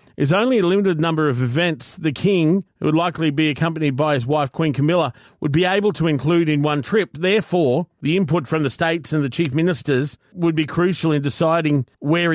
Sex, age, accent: male, 40-59, Australian